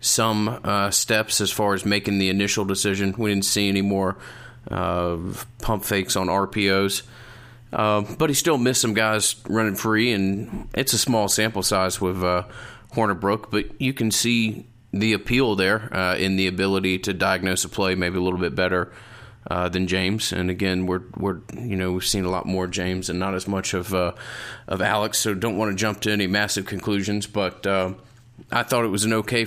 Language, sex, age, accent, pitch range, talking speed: English, male, 30-49, American, 95-110 Hz, 200 wpm